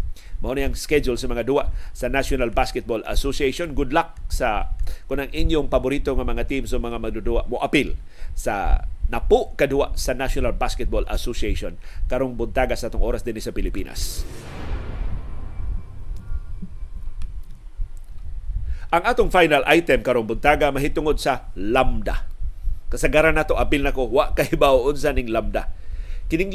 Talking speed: 140 wpm